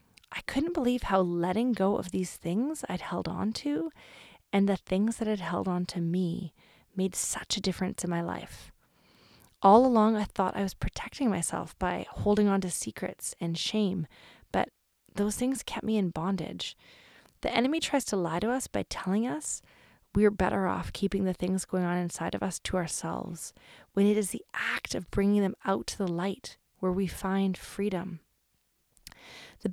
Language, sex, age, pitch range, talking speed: English, female, 30-49, 180-210 Hz, 185 wpm